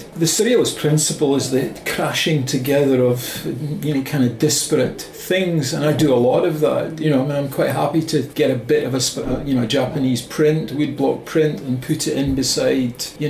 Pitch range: 125-150 Hz